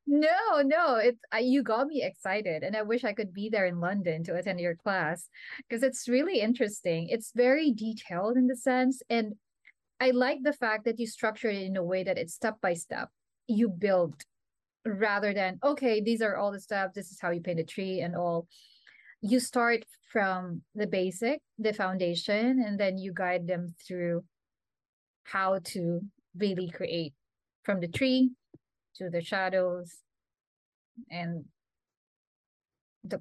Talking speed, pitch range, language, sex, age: 160 wpm, 185-240 Hz, English, female, 20-39